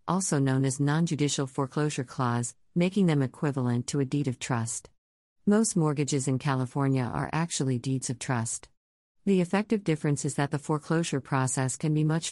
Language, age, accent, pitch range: English, 50-69, American, 130-160 Hz